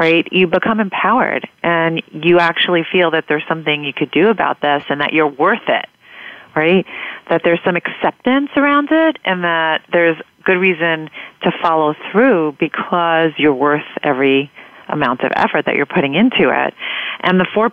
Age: 40-59